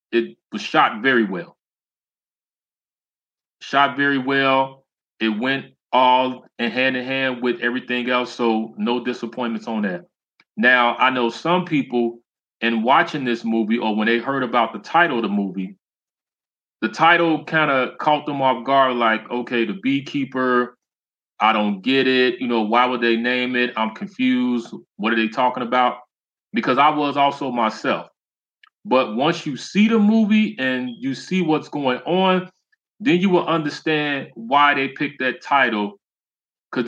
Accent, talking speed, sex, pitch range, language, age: American, 160 wpm, male, 120-150 Hz, English, 30-49